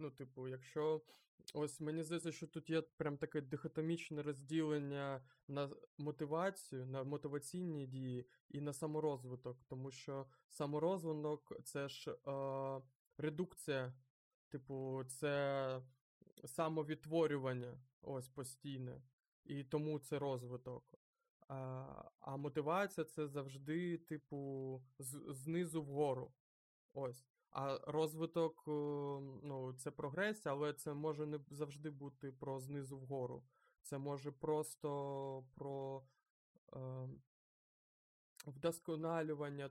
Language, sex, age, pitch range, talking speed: Ukrainian, male, 20-39, 135-155 Hz, 105 wpm